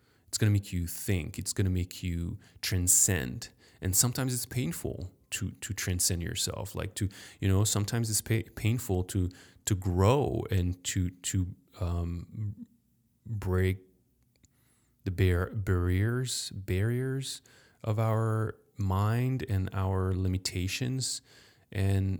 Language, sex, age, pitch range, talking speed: English, male, 30-49, 90-115 Hz, 120 wpm